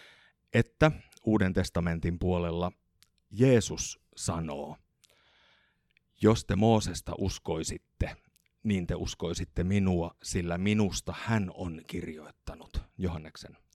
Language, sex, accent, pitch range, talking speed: Finnish, male, native, 85-105 Hz, 85 wpm